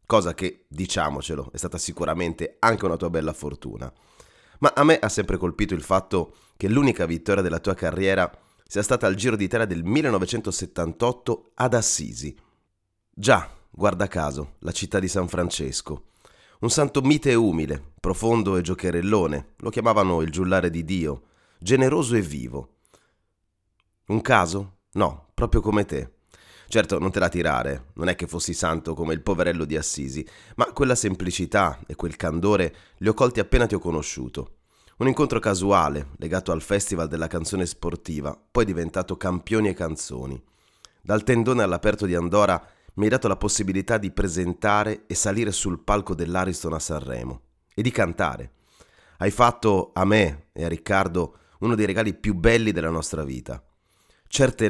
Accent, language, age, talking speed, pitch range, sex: native, Italian, 30-49, 160 wpm, 80-105 Hz, male